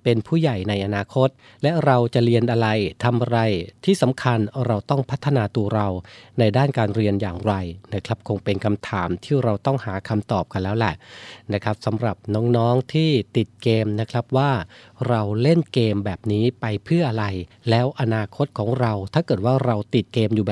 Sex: male